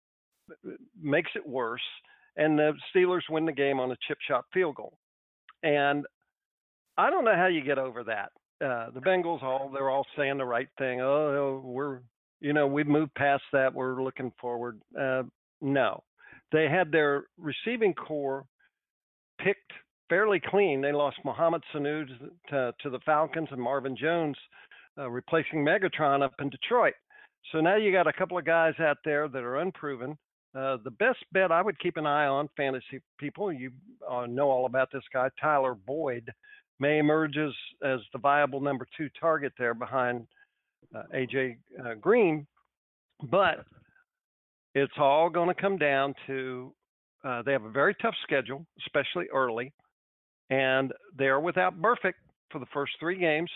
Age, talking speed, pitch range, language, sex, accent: 50-69, 165 wpm, 130-165 Hz, English, male, American